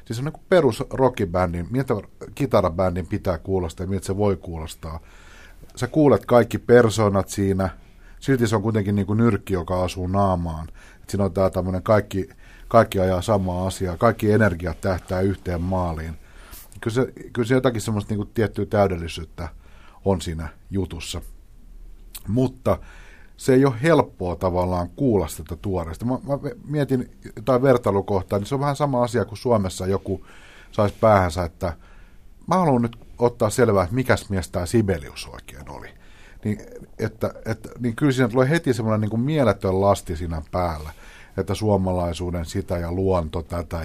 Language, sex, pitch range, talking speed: Finnish, male, 90-115 Hz, 155 wpm